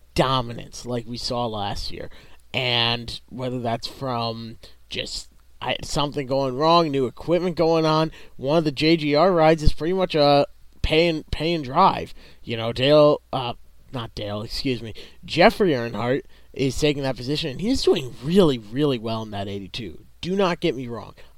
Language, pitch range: English, 120-155 Hz